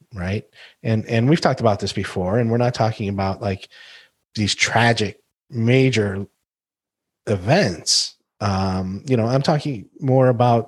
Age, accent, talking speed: 30-49, American, 140 wpm